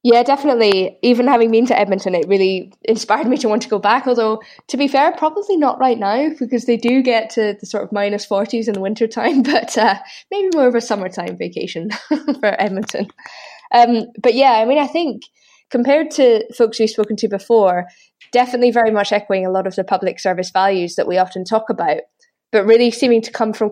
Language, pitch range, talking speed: English, 190-240 Hz, 210 wpm